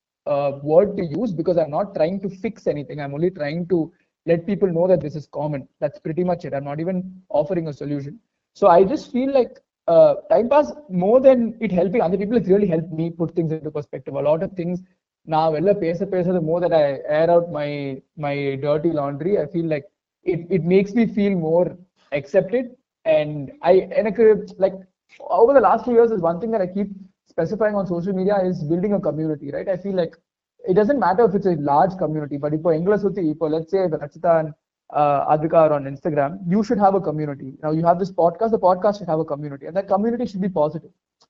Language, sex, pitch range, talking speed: Tamil, male, 155-200 Hz, 225 wpm